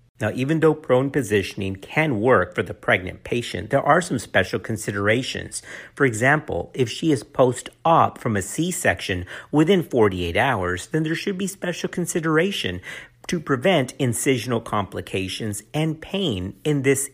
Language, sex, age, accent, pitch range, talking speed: English, male, 50-69, American, 105-155 Hz, 145 wpm